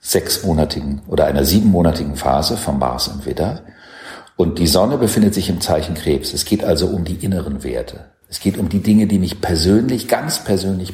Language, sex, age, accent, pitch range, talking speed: German, male, 50-69, German, 85-110 Hz, 185 wpm